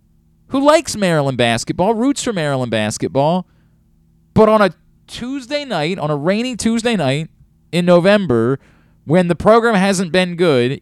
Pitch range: 115-190 Hz